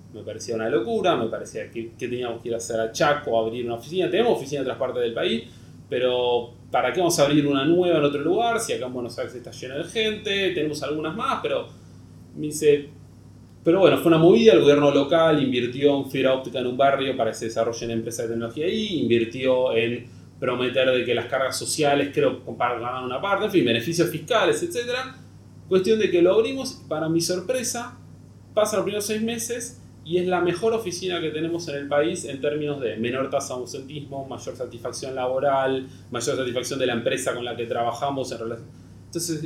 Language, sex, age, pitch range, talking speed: Spanish, male, 30-49, 120-165 Hz, 210 wpm